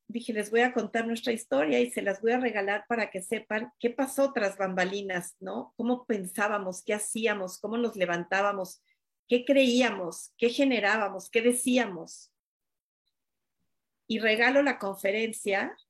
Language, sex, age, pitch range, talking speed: Spanish, female, 40-59, 195-235 Hz, 145 wpm